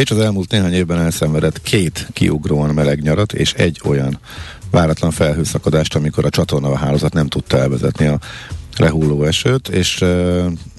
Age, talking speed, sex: 50-69, 155 wpm, male